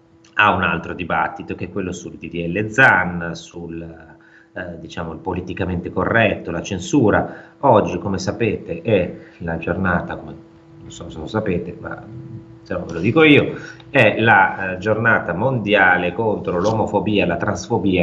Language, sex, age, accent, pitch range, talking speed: Italian, male, 30-49, native, 85-95 Hz, 155 wpm